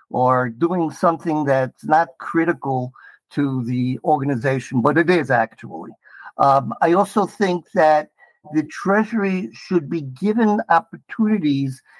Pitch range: 140-180 Hz